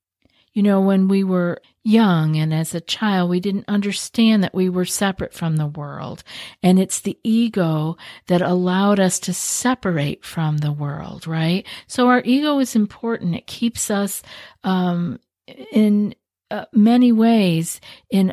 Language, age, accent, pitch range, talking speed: English, 50-69, American, 170-205 Hz, 155 wpm